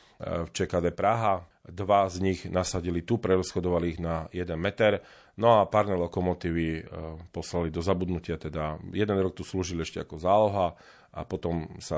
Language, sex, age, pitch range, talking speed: Slovak, male, 40-59, 85-100 Hz, 155 wpm